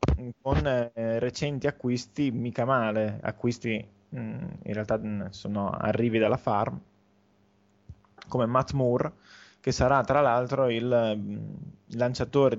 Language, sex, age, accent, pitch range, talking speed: Italian, male, 20-39, native, 105-125 Hz, 105 wpm